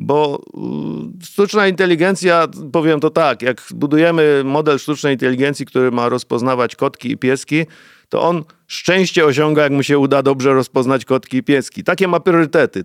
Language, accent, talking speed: Polish, native, 155 wpm